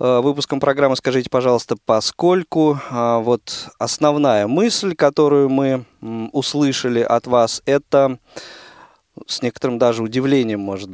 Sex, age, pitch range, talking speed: male, 20-39, 105-140 Hz, 100 wpm